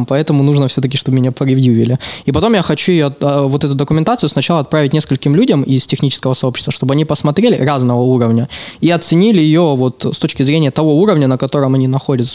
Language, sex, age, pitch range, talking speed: Russian, male, 20-39, 130-165 Hz, 180 wpm